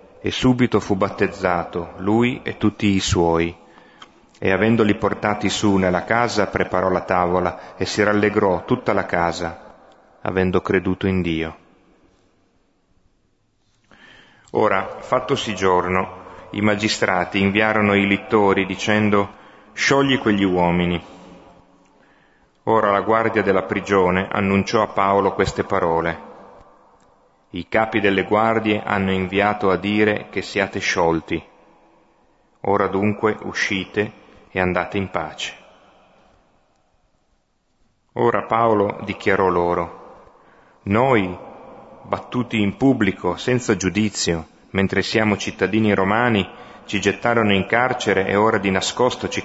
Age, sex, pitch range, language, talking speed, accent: 30-49, male, 90-110 Hz, Italian, 110 wpm, native